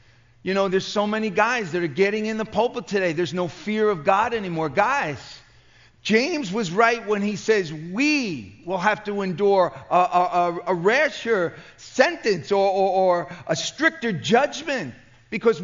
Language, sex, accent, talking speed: English, male, American, 160 wpm